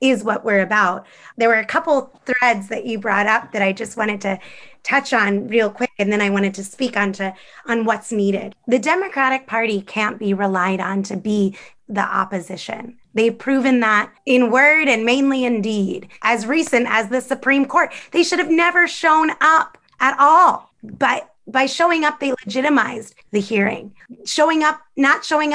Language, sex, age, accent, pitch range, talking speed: English, female, 30-49, American, 205-255 Hz, 185 wpm